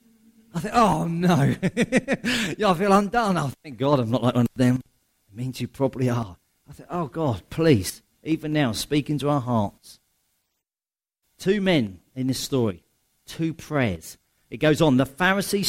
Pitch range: 120-175 Hz